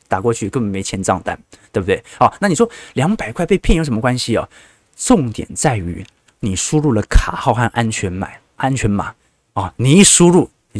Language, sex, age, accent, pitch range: Chinese, male, 20-39, native, 105-150 Hz